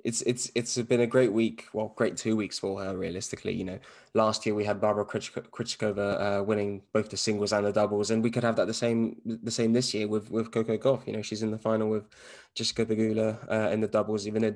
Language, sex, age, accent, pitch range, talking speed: English, male, 10-29, British, 100-110 Hz, 250 wpm